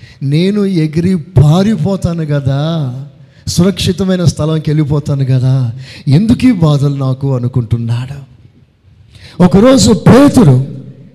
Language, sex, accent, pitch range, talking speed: Telugu, male, native, 140-205 Hz, 75 wpm